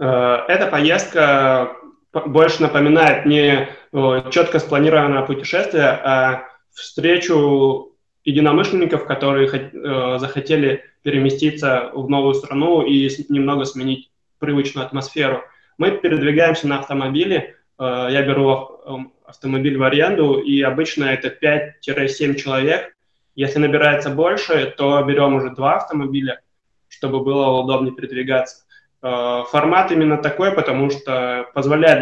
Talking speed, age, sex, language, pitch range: 100 wpm, 20-39, male, Russian, 135-150 Hz